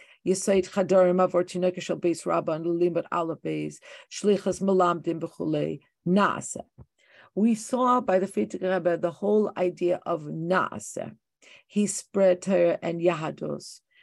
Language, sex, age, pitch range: English, female, 50-69, 180-210 Hz